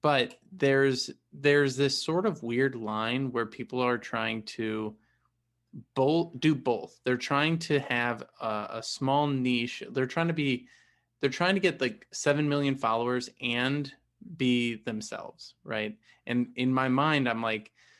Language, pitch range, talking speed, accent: English, 115-140 Hz, 155 wpm, American